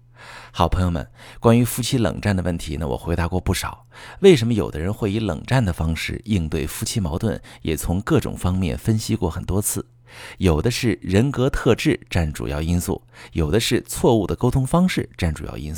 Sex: male